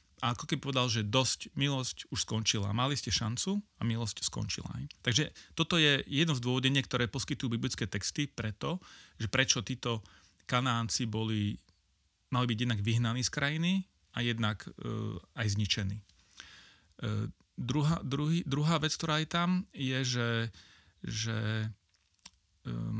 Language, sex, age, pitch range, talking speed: Slovak, male, 30-49, 110-135 Hz, 145 wpm